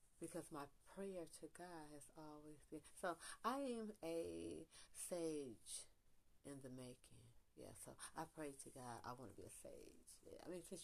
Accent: American